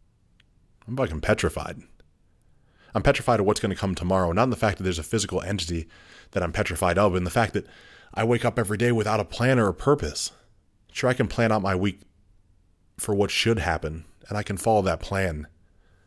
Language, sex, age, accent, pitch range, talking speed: English, male, 30-49, American, 90-120 Hz, 210 wpm